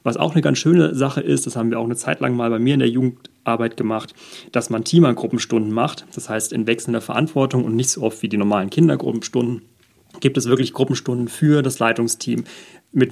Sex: male